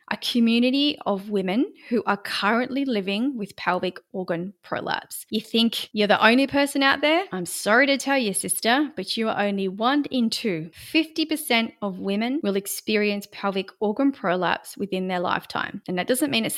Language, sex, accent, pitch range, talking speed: English, female, Australian, 190-250 Hz, 175 wpm